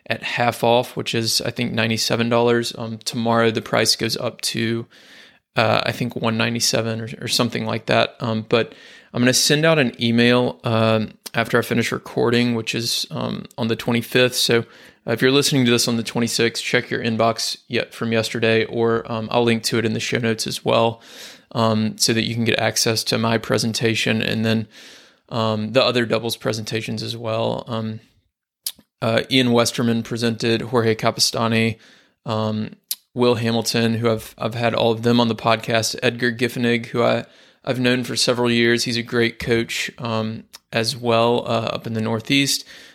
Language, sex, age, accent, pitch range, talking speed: English, male, 20-39, American, 115-120 Hz, 185 wpm